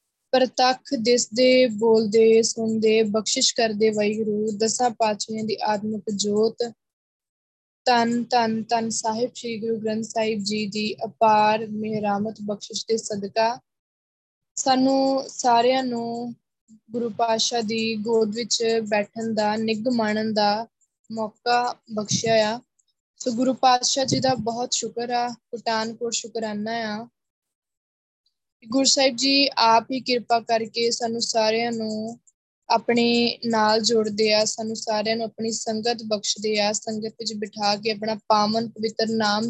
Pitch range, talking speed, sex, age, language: 220-240 Hz, 120 wpm, female, 20-39, Punjabi